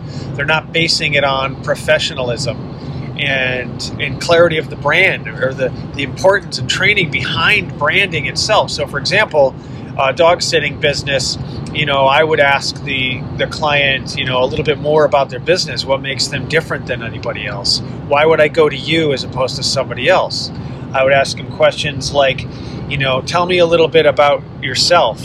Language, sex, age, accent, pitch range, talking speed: English, male, 30-49, American, 130-155 Hz, 190 wpm